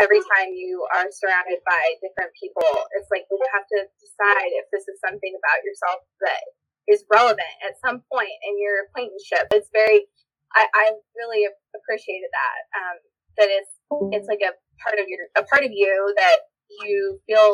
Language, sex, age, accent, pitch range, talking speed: English, female, 20-39, American, 195-255 Hz, 165 wpm